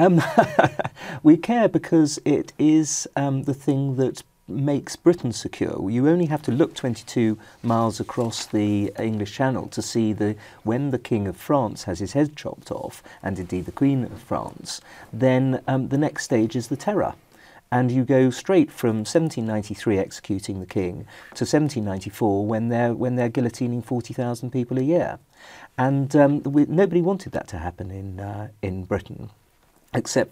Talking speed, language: 165 wpm, English